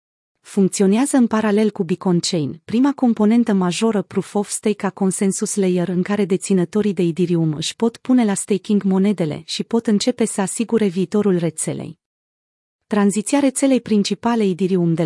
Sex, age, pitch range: female, 30-49, 180-220 Hz